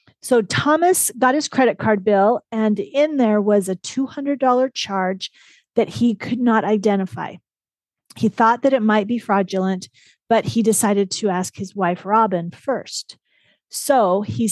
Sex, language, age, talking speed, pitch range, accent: female, English, 40-59, 155 wpm, 190-240 Hz, American